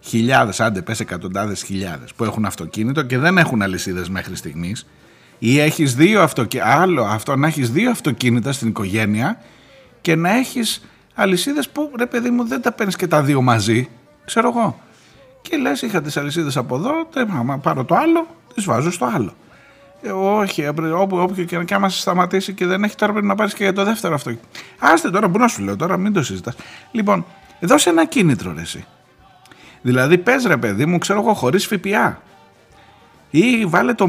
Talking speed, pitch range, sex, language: 185 wpm, 115-190 Hz, male, Greek